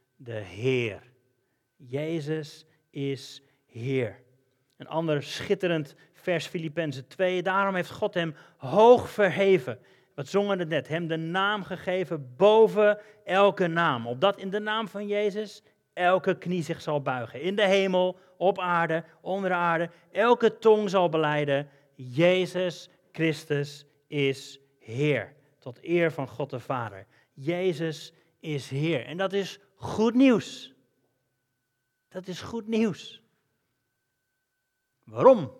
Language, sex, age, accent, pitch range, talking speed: Dutch, male, 40-59, Dutch, 140-195 Hz, 125 wpm